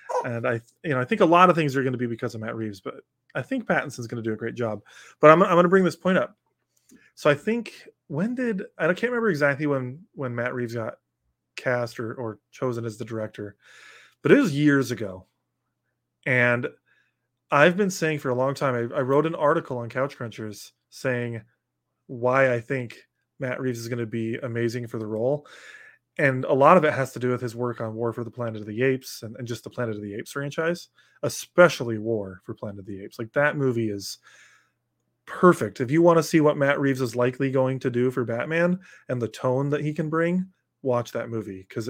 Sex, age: male, 20-39